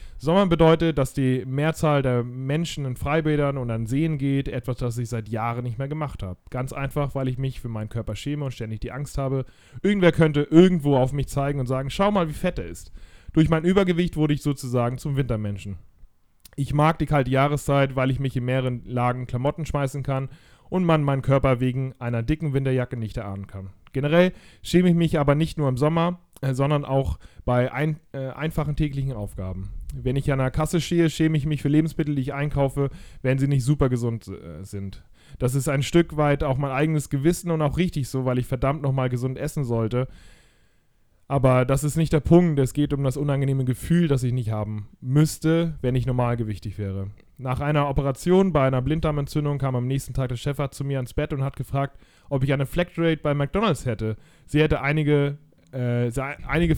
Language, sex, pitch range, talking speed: German, male, 125-150 Hz, 200 wpm